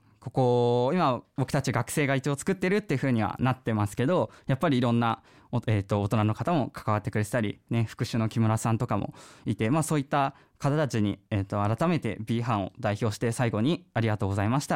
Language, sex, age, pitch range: Japanese, male, 20-39, 110-145 Hz